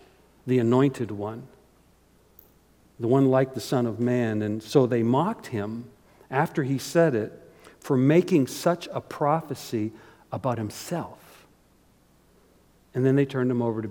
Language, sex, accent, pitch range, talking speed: English, male, American, 120-155 Hz, 140 wpm